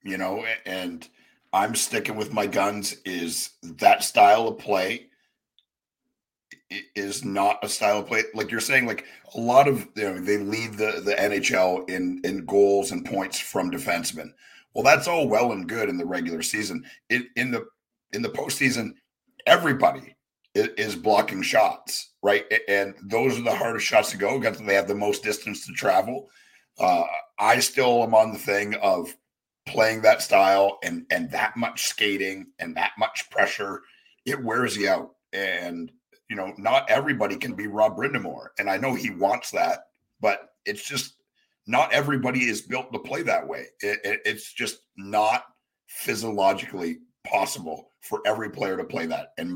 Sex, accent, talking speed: male, American, 170 wpm